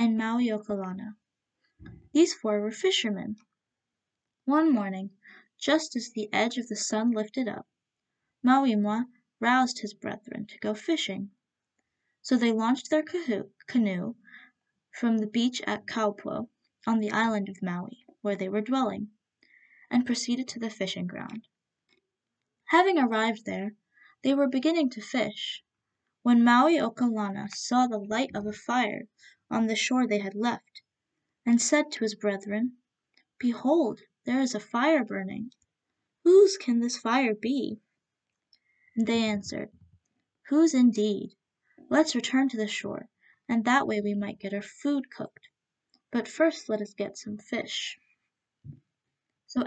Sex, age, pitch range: female, 10-29, 215-260 Hz